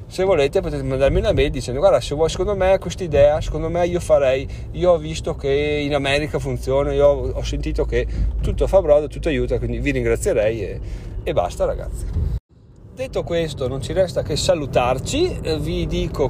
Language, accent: Italian, native